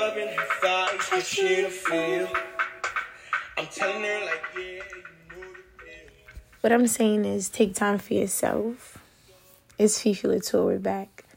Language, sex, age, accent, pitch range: English, female, 20-39, American, 195-220 Hz